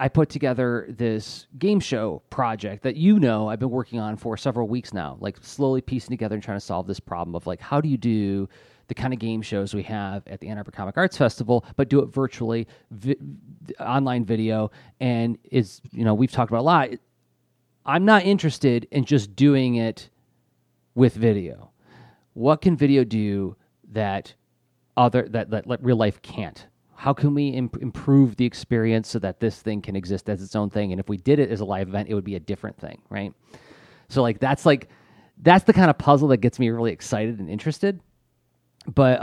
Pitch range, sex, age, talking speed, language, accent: 105-135 Hz, male, 30-49, 205 wpm, English, American